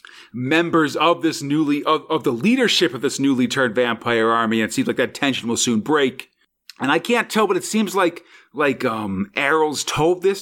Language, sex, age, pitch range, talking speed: English, male, 40-59, 130-180 Hz, 205 wpm